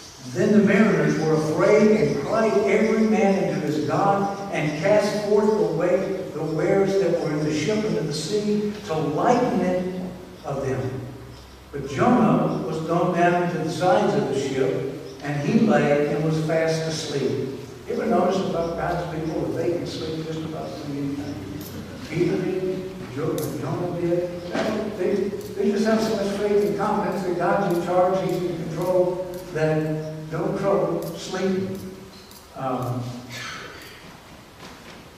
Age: 60-79